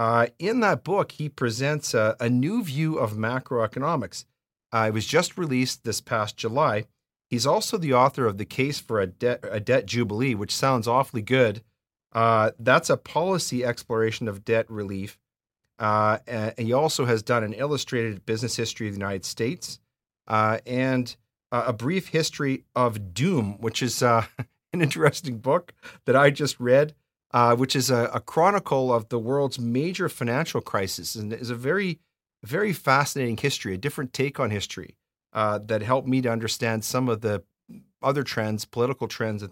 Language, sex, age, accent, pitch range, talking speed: English, male, 40-59, American, 110-135 Hz, 175 wpm